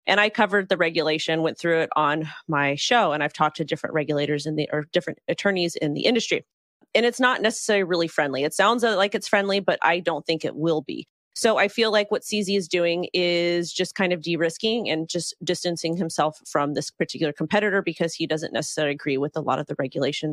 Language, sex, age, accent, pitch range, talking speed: English, female, 30-49, American, 155-185 Hz, 215 wpm